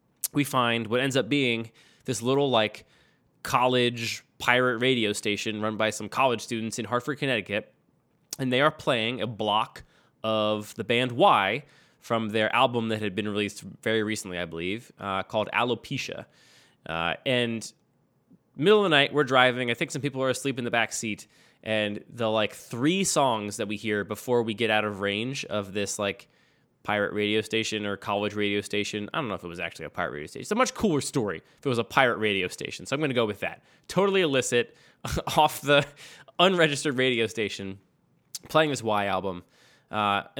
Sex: male